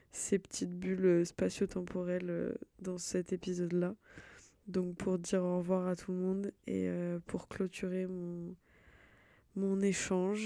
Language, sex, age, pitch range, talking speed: French, female, 20-39, 170-185 Hz, 125 wpm